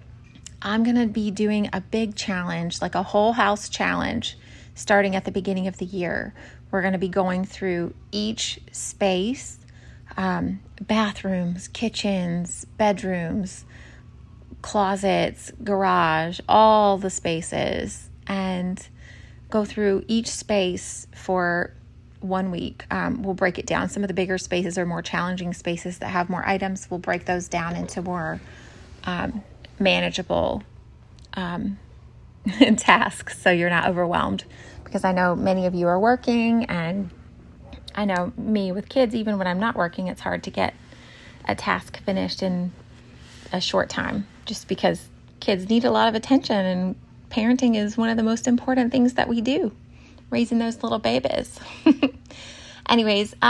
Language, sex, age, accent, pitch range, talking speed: English, female, 30-49, American, 180-225 Hz, 145 wpm